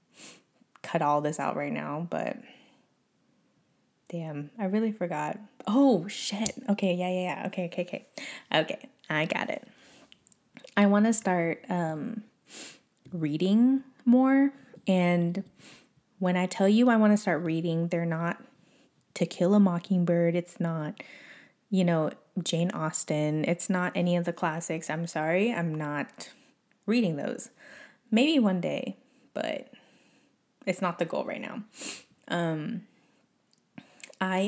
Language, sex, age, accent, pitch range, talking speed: English, female, 20-39, American, 170-225 Hz, 135 wpm